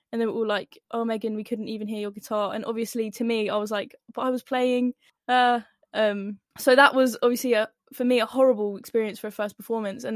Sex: female